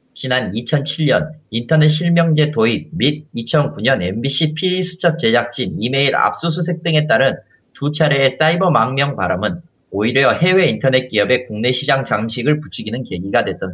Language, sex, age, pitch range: Korean, male, 30-49, 130-170 Hz